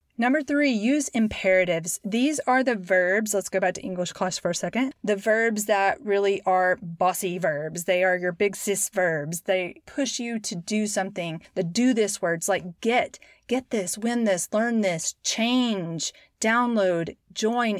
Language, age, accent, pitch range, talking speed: English, 30-49, American, 190-230 Hz, 170 wpm